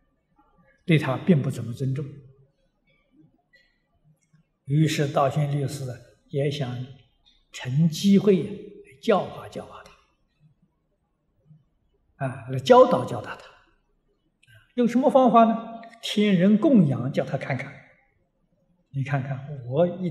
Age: 60-79